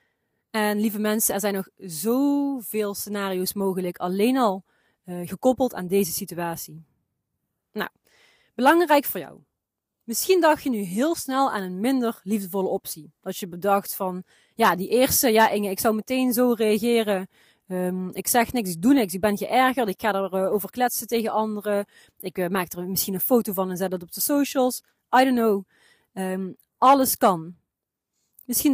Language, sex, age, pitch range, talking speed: Dutch, female, 30-49, 185-240 Hz, 175 wpm